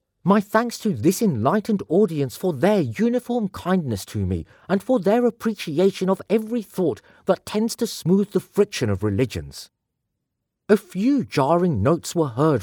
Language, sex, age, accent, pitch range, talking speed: English, male, 40-59, British, 130-205 Hz, 155 wpm